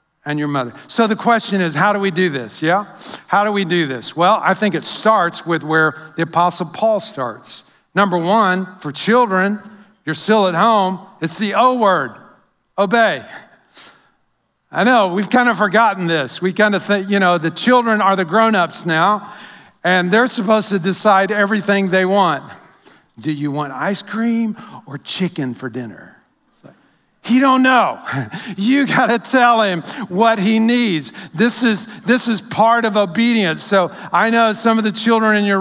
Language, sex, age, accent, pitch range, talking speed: English, male, 50-69, American, 180-220 Hz, 175 wpm